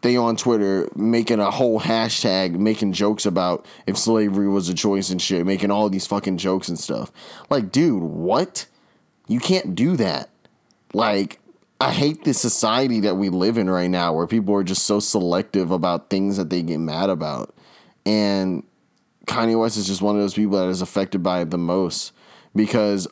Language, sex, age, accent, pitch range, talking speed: English, male, 20-39, American, 95-110 Hz, 185 wpm